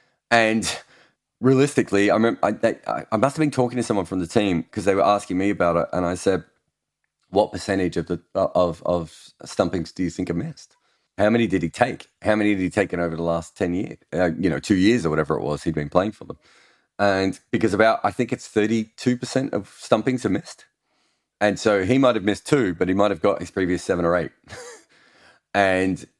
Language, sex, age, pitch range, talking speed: English, male, 30-49, 90-120 Hz, 210 wpm